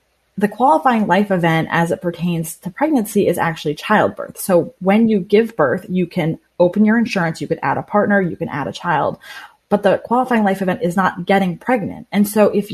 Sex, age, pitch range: female, 20-39, 175-215 Hz